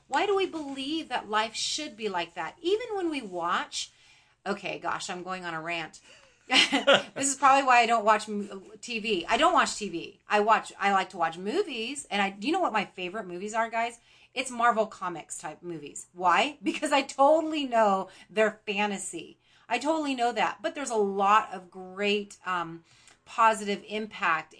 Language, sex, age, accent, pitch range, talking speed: English, female, 30-49, American, 190-230 Hz, 185 wpm